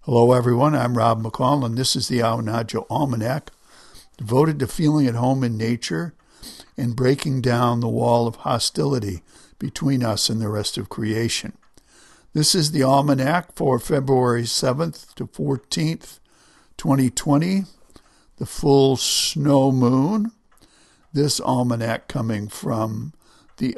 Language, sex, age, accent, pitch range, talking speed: English, male, 60-79, American, 115-145 Hz, 130 wpm